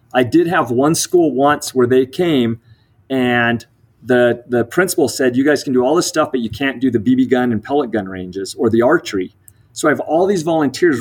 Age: 30-49